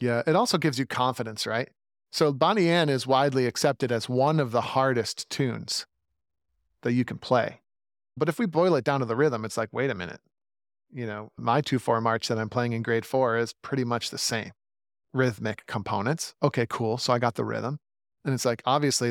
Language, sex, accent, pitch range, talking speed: English, male, American, 120-165 Hz, 205 wpm